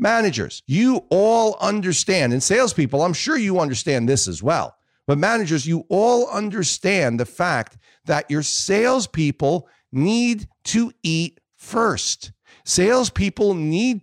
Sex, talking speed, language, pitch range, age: male, 125 wpm, English, 140-220 Hz, 50-69